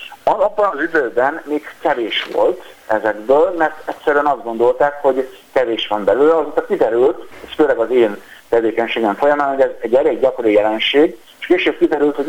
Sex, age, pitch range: male, 50-69, 110-145 Hz